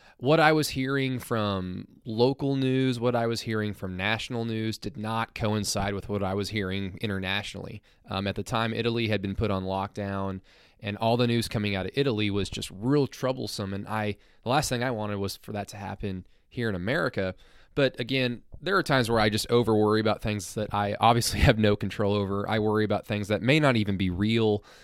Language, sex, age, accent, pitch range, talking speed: English, male, 20-39, American, 100-125 Hz, 215 wpm